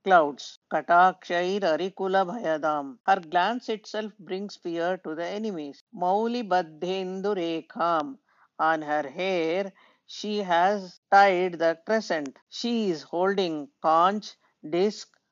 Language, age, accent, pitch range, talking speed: English, 50-69, Indian, 165-195 Hz, 100 wpm